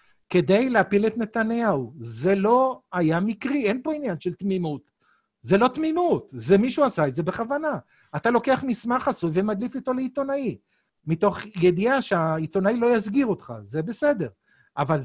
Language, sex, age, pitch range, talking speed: Hebrew, male, 50-69, 170-230 Hz, 150 wpm